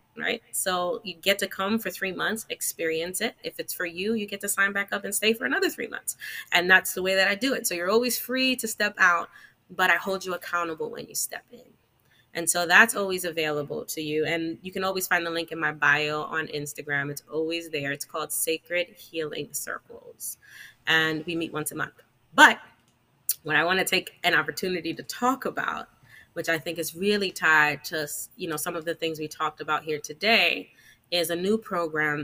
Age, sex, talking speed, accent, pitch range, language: 20-39, female, 220 wpm, American, 155-195 Hz, English